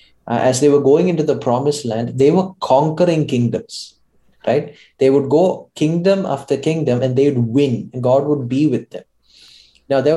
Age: 20-39